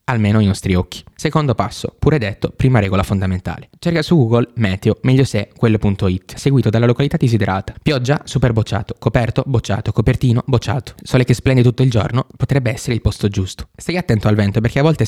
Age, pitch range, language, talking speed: 20-39, 105-130 Hz, Italian, 185 wpm